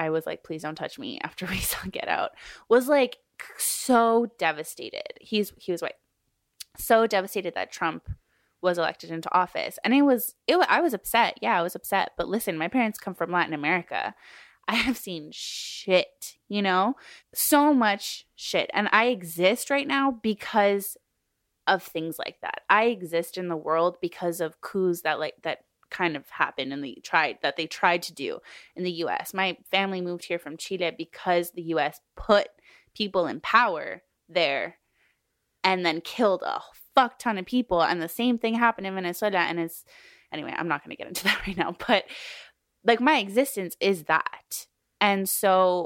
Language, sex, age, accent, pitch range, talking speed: English, female, 20-39, American, 175-235 Hz, 185 wpm